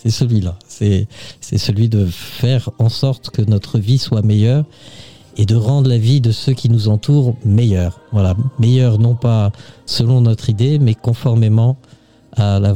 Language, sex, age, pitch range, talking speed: French, male, 50-69, 105-125 Hz, 170 wpm